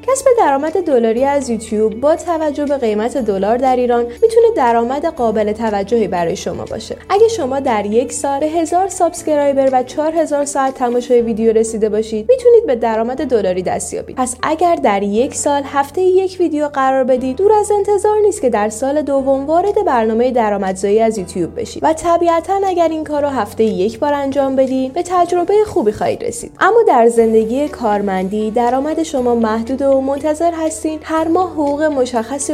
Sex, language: female, Persian